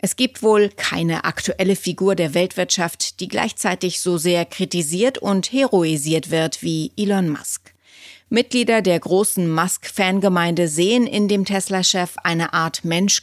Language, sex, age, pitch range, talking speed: German, female, 30-49, 170-200 Hz, 135 wpm